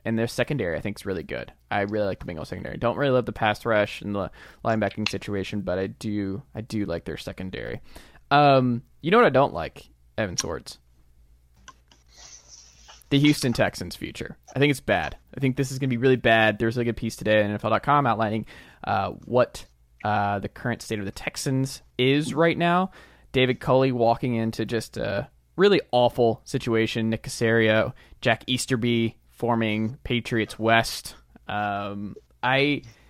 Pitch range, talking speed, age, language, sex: 105-125 Hz, 175 wpm, 20-39, English, male